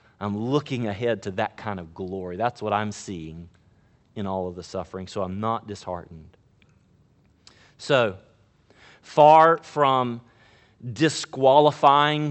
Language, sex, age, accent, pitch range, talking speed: English, male, 40-59, American, 100-130 Hz, 120 wpm